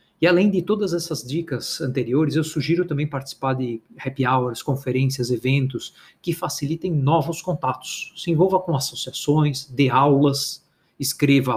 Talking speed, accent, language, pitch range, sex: 140 wpm, Brazilian, Portuguese, 130-160 Hz, male